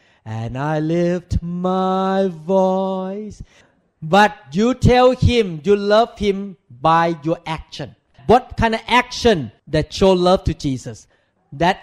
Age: 40-59